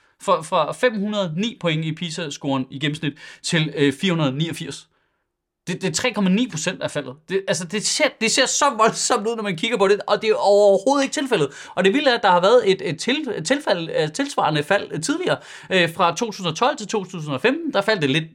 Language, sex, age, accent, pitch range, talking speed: Danish, male, 30-49, native, 145-210 Hz, 200 wpm